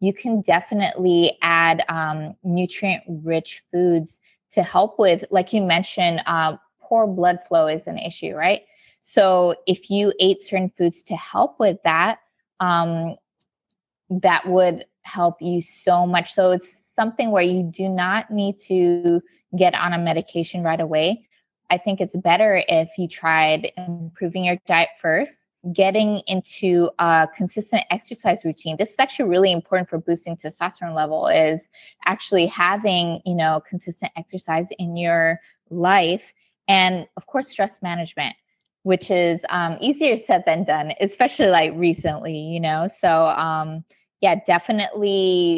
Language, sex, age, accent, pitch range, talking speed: English, female, 20-39, American, 165-195 Hz, 145 wpm